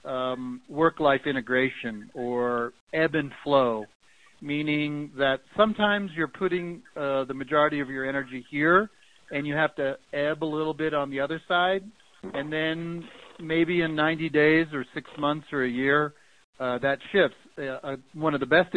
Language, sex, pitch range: English, male, 130-150 Hz